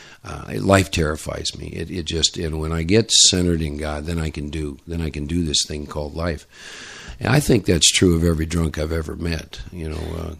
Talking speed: 230 wpm